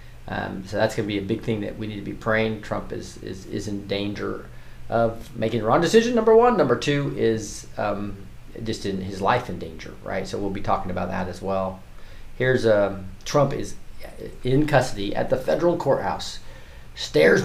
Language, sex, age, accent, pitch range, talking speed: English, male, 40-59, American, 95-120 Hz, 200 wpm